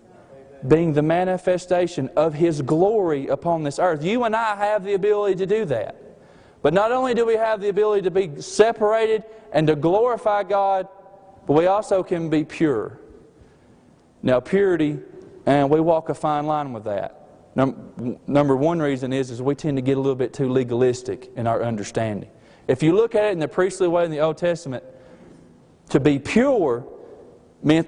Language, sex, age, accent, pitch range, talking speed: English, male, 40-59, American, 155-215 Hz, 180 wpm